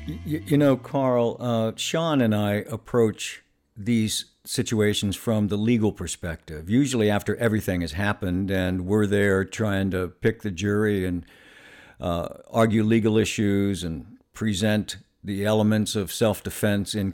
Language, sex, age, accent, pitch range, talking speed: English, male, 60-79, American, 95-110 Hz, 140 wpm